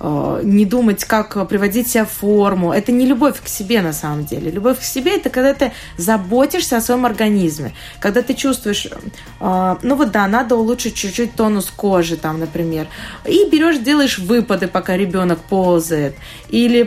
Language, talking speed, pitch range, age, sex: Russian, 165 wpm, 190-245 Hz, 20-39, female